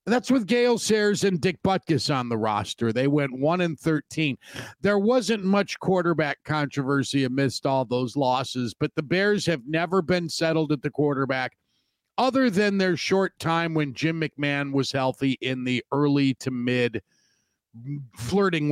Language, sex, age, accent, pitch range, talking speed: English, male, 50-69, American, 130-185 Hz, 155 wpm